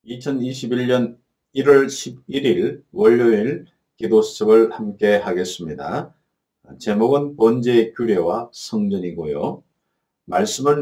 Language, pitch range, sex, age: Korean, 110-160 Hz, male, 50-69